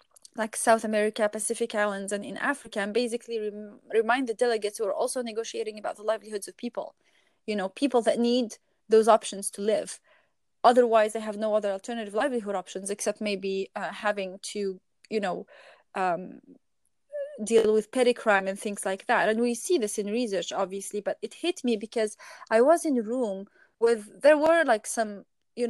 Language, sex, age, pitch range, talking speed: English, female, 30-49, 210-255 Hz, 185 wpm